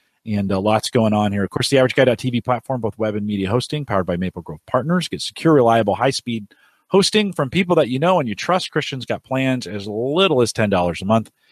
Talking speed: 225 wpm